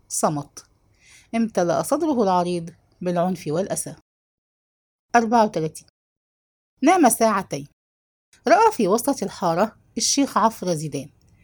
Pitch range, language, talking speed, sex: 165-240 Hz, English, 85 wpm, female